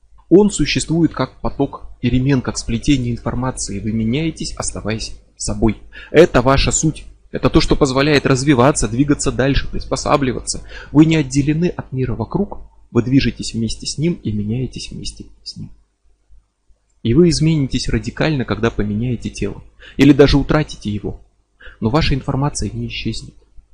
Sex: male